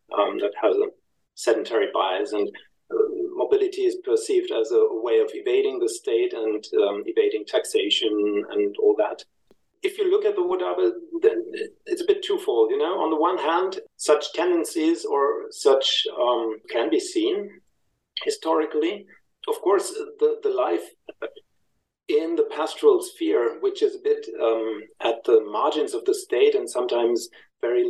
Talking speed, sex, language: 160 wpm, male, English